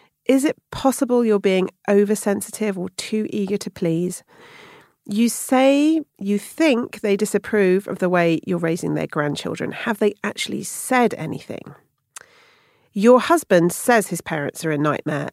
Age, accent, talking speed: 40-59, British, 145 wpm